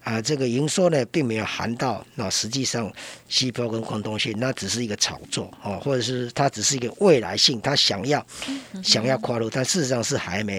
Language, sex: Chinese, male